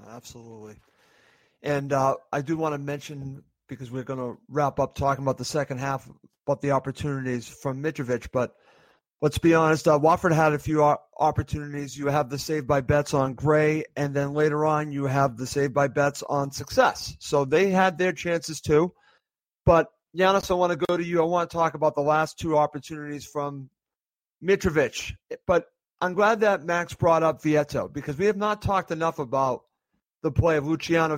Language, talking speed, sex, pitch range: English, 190 wpm, male, 145-175 Hz